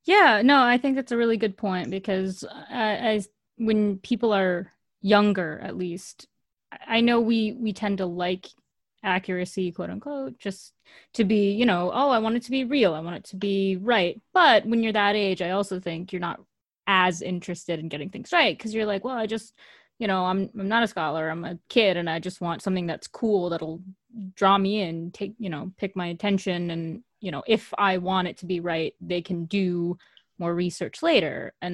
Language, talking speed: English, 210 wpm